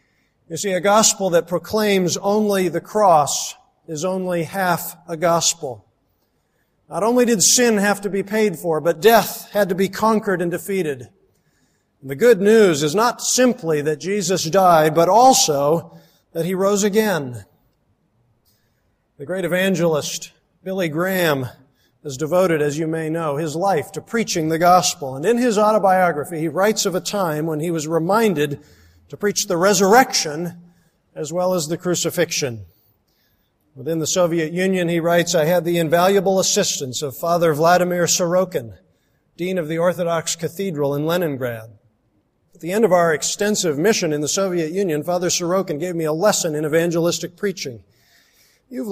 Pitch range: 150-195 Hz